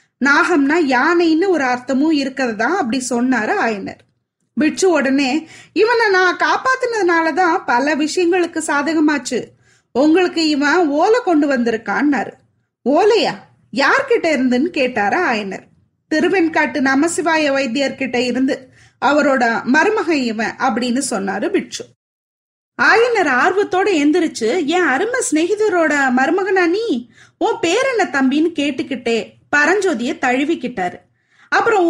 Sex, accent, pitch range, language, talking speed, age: female, native, 265-360 Hz, Tamil, 100 wpm, 20-39